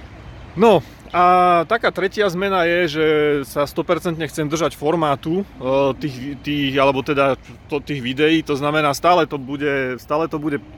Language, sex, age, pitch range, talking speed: Slovak, male, 30-49, 135-155 Hz, 145 wpm